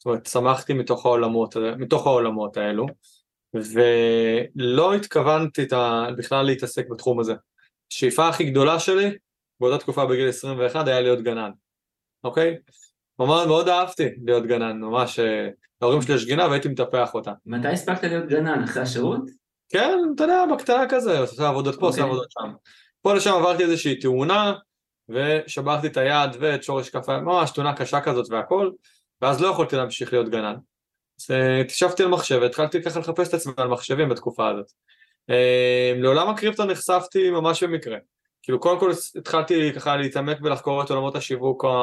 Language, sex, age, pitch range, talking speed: Hebrew, male, 20-39, 125-165 Hz, 145 wpm